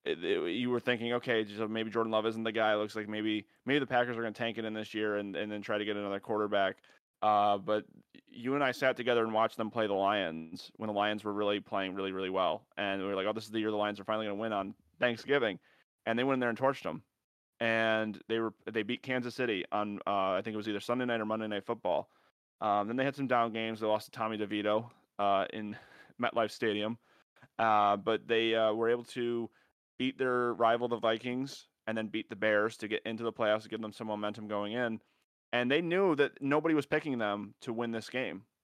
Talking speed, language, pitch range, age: 250 wpm, English, 105-120 Hz, 30-49